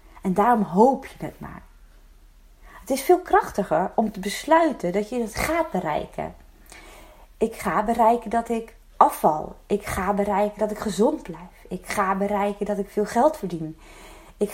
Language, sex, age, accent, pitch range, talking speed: Dutch, female, 30-49, Dutch, 190-235 Hz, 165 wpm